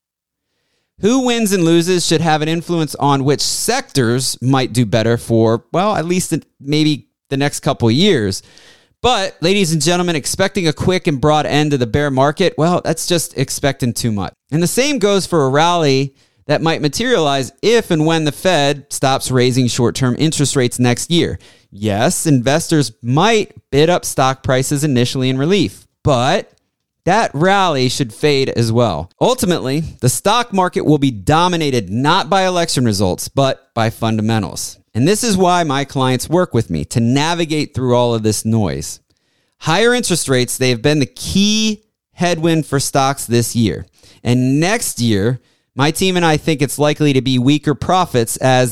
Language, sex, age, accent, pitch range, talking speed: English, male, 30-49, American, 125-170 Hz, 170 wpm